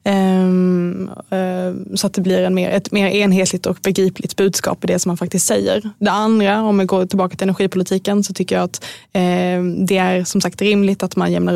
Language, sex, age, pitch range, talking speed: Swedish, female, 20-39, 180-195 Hz, 185 wpm